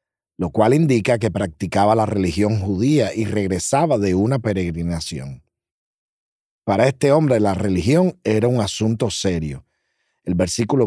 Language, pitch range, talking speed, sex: Spanish, 95-130 Hz, 135 wpm, male